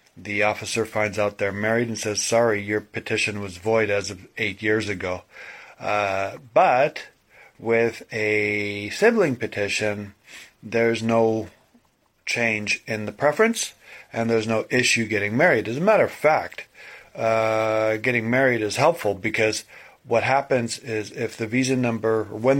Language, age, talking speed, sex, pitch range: English, 40-59, 145 wpm, male, 110-130 Hz